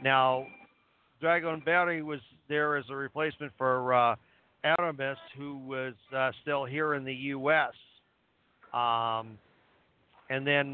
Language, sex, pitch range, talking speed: English, male, 130-160 Hz, 125 wpm